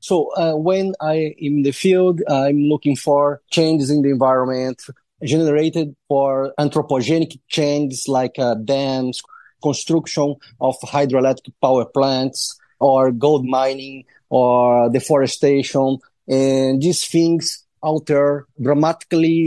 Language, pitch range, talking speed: English, 135-160 Hz, 110 wpm